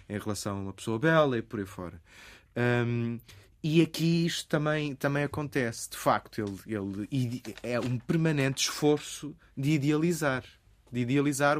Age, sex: 20-39, male